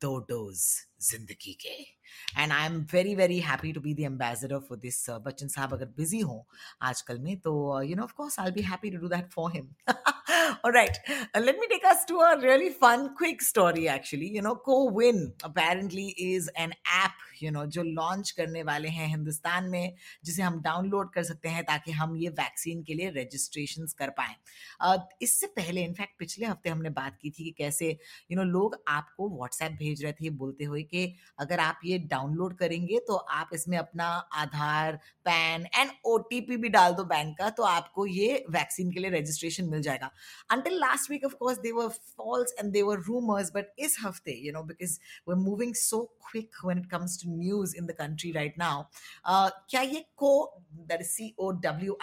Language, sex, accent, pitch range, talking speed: Hindi, female, native, 160-210 Hz, 200 wpm